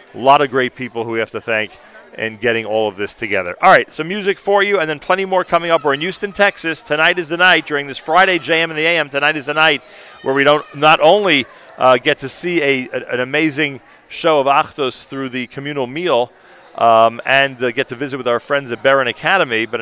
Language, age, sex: English, 40-59, male